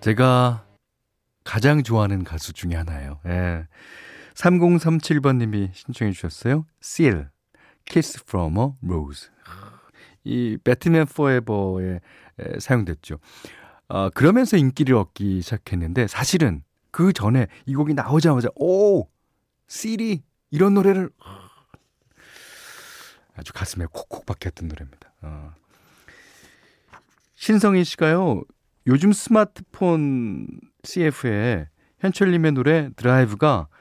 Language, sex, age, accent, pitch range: Korean, male, 40-59, native, 90-150 Hz